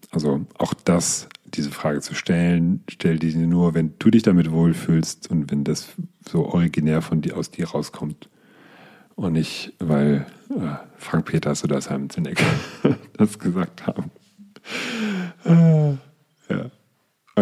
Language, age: German, 40-59